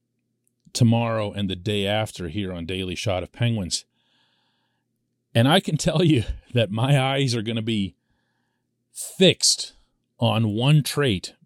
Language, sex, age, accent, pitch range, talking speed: English, male, 40-59, American, 105-140 Hz, 140 wpm